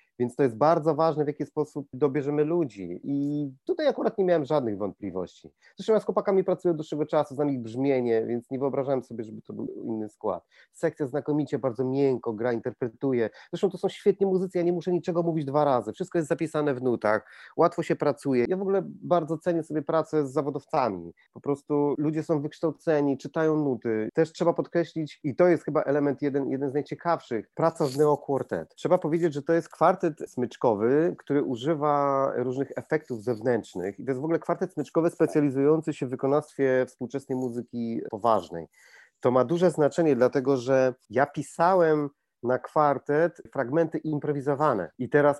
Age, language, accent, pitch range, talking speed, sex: 30-49, Polish, native, 135-170 Hz, 175 wpm, male